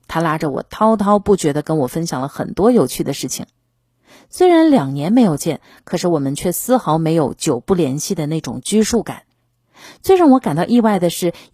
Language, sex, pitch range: Chinese, female, 145-205 Hz